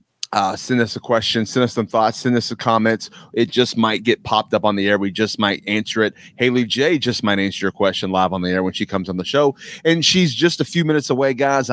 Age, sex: 30-49, male